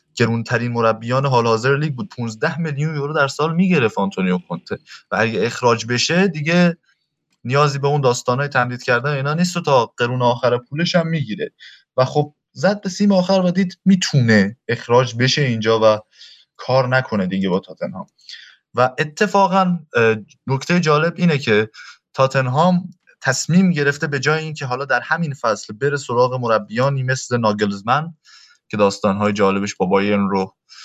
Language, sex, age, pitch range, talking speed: Persian, male, 20-39, 115-155 Hz, 160 wpm